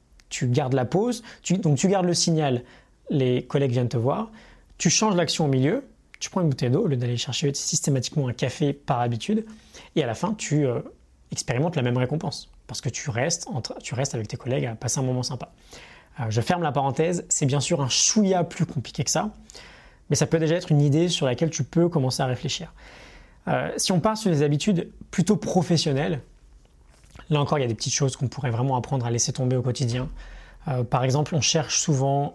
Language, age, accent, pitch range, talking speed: French, 20-39, French, 130-160 Hz, 225 wpm